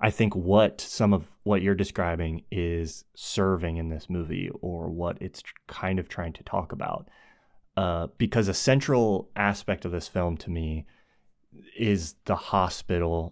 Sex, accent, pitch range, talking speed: male, American, 85-100 Hz, 160 wpm